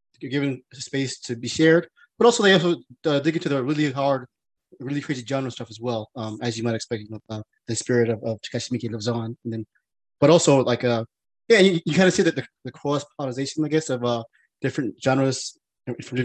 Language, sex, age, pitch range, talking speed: English, male, 20-39, 120-165 Hz, 220 wpm